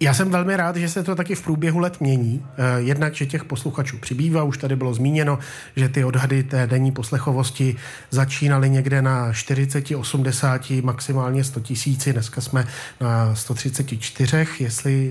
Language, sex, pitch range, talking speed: Czech, male, 130-155 Hz, 160 wpm